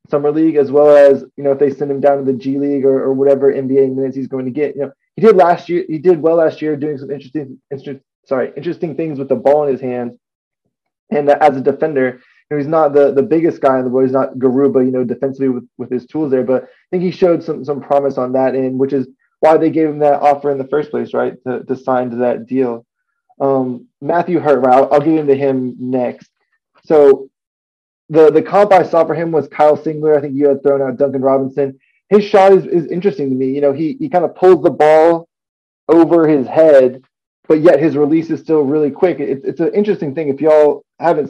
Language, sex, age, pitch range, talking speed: English, male, 20-39, 135-155 Hz, 245 wpm